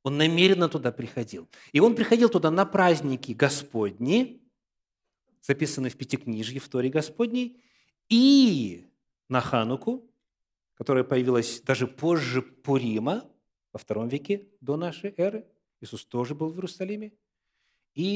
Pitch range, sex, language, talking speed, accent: 115-170 Hz, male, Russian, 120 wpm, native